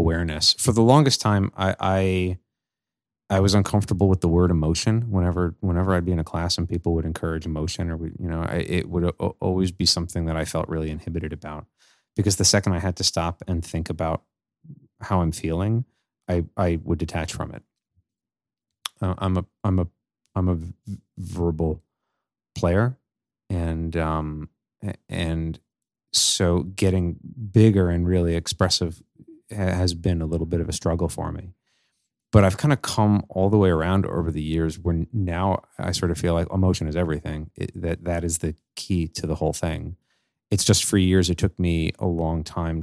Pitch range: 80-95 Hz